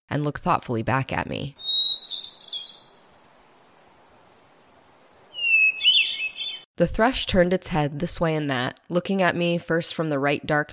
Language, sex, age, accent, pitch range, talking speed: English, female, 20-39, American, 135-175 Hz, 130 wpm